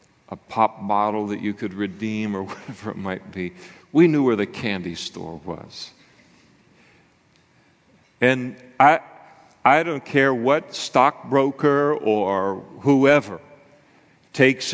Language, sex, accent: English, male, American